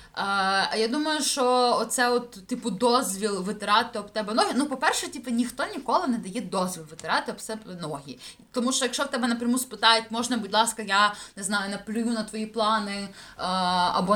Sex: female